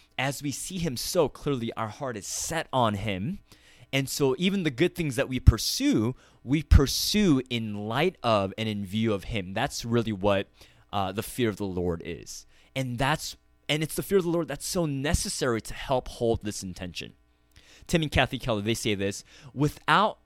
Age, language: 20-39, English